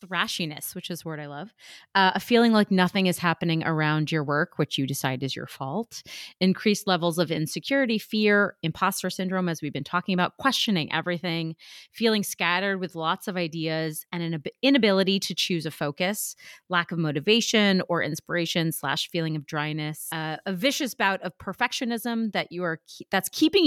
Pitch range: 160-210 Hz